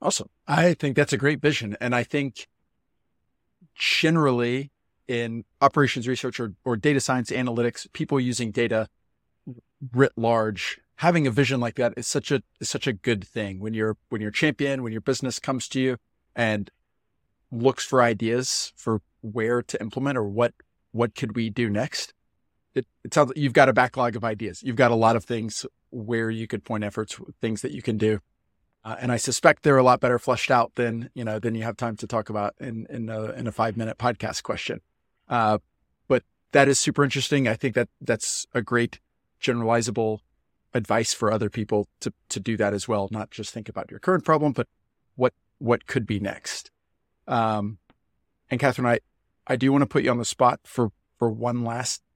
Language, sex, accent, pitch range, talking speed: English, male, American, 110-130 Hz, 195 wpm